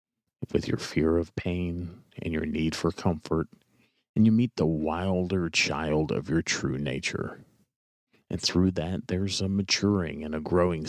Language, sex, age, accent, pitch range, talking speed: English, male, 40-59, American, 80-95 Hz, 160 wpm